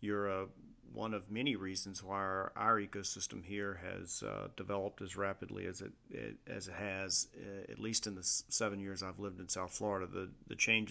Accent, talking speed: American, 210 wpm